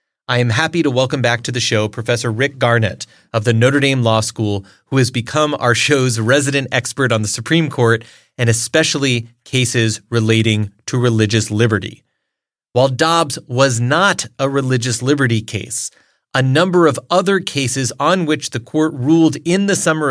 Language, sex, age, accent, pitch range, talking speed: English, male, 30-49, American, 115-140 Hz, 170 wpm